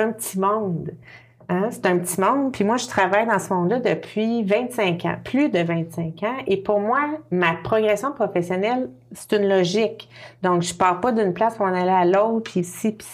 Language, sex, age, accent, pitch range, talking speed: French, female, 30-49, Canadian, 180-215 Hz, 210 wpm